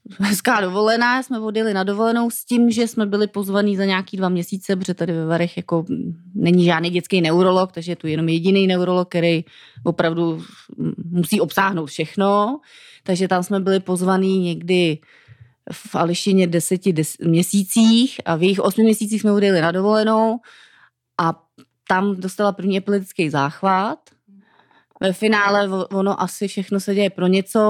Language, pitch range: Czech, 170-200 Hz